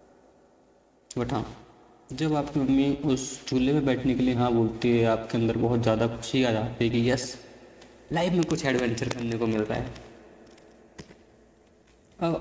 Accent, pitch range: native, 115-140 Hz